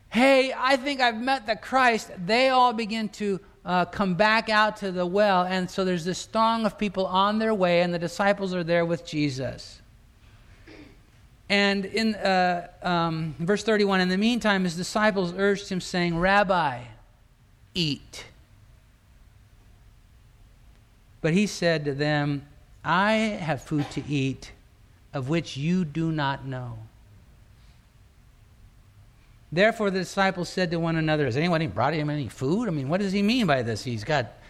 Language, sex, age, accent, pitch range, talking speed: English, male, 50-69, American, 135-200 Hz, 155 wpm